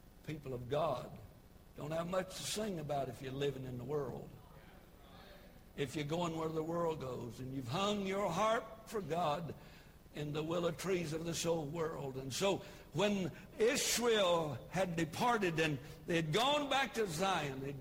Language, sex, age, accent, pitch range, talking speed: English, male, 60-79, American, 140-185 Hz, 170 wpm